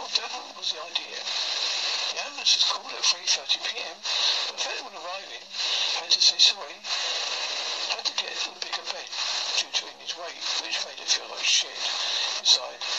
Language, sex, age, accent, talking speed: English, male, 60-79, British, 165 wpm